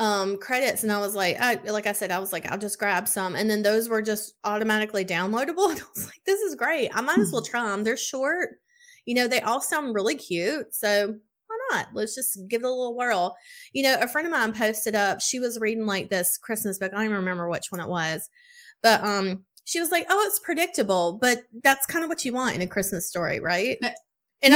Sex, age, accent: female, 20-39, American